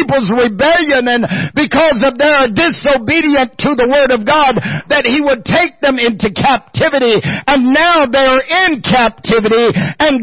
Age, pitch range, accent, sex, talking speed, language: 50-69, 240-315 Hz, American, male, 145 wpm, English